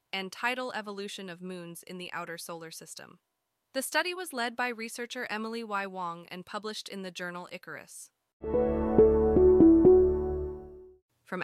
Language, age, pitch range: English, 20-39, 170-215 Hz